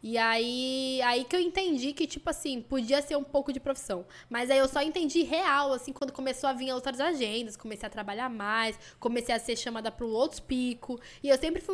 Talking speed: 220 wpm